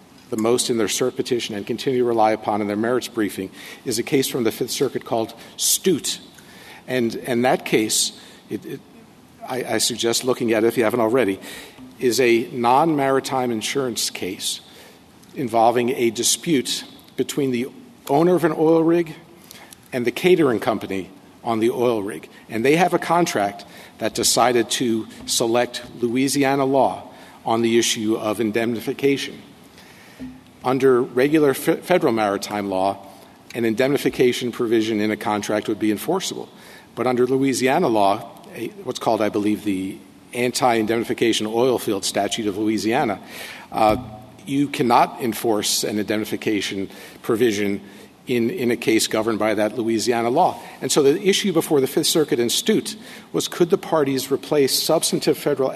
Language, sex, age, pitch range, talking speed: English, male, 50-69, 110-135 Hz, 150 wpm